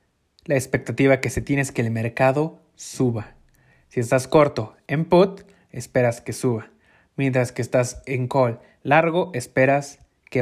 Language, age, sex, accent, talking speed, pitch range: Spanish, 20-39, male, Mexican, 150 wpm, 120-160 Hz